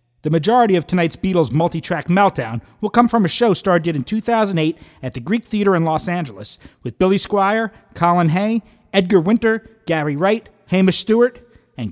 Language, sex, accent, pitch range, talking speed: English, male, American, 150-210 Hz, 170 wpm